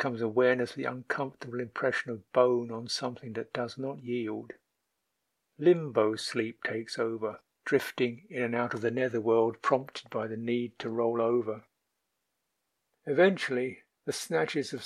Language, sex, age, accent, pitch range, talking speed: English, male, 50-69, British, 120-145 Hz, 150 wpm